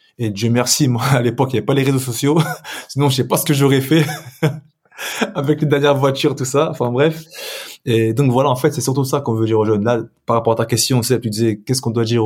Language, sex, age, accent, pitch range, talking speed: French, male, 20-39, French, 110-140 Hz, 275 wpm